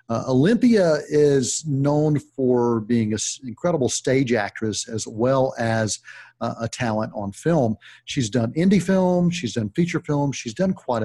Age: 50-69